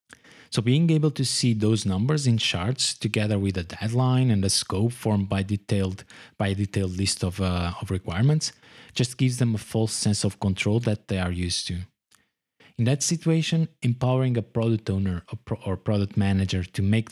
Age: 20-39